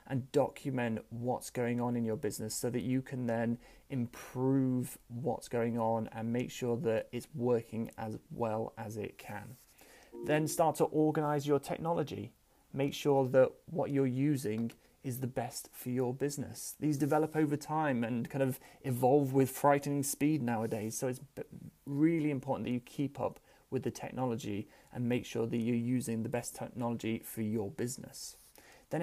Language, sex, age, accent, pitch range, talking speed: English, male, 30-49, British, 120-140 Hz, 170 wpm